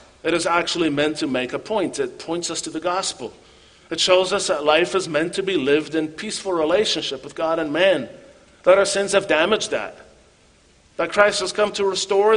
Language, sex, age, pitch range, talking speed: English, male, 50-69, 145-200 Hz, 210 wpm